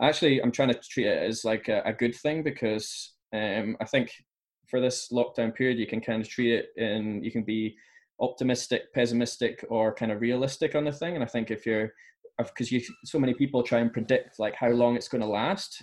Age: 10-29